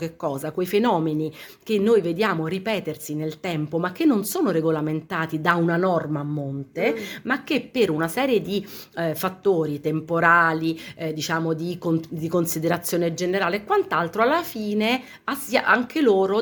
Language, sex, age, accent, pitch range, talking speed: Italian, female, 40-59, native, 155-195 Hz, 155 wpm